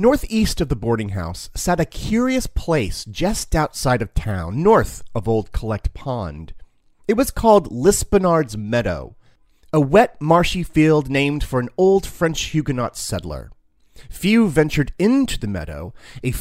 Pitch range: 105-170 Hz